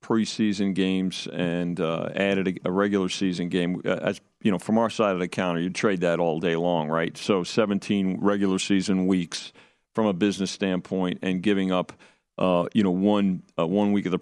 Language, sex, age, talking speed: English, male, 50-69, 200 wpm